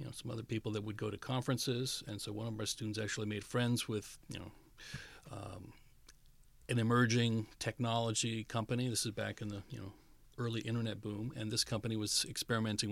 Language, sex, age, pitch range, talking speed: English, male, 40-59, 105-120 Hz, 190 wpm